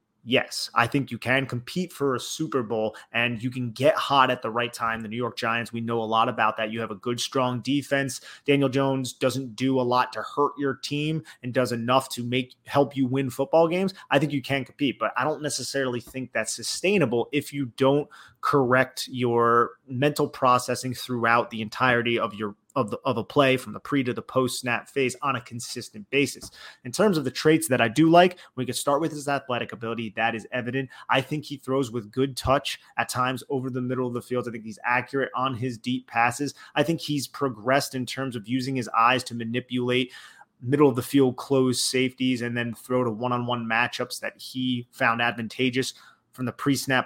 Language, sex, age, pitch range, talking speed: English, male, 30-49, 120-135 Hz, 215 wpm